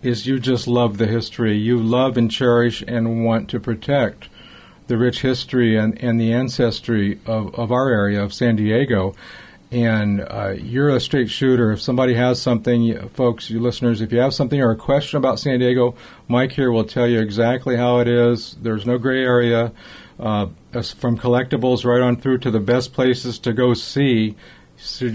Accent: American